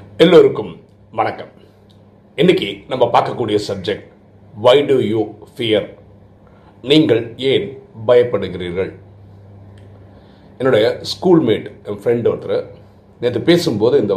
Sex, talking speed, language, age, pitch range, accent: male, 60 wpm, Tamil, 40-59, 100-120 Hz, native